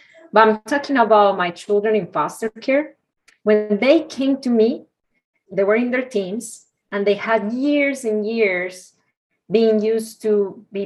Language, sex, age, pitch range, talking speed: English, female, 30-49, 185-225 Hz, 160 wpm